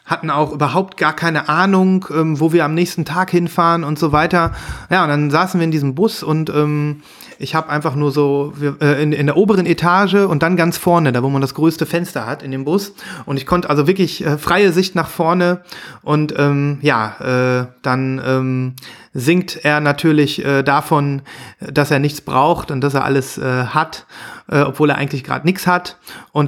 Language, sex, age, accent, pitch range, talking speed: German, male, 30-49, German, 140-175 Hz, 205 wpm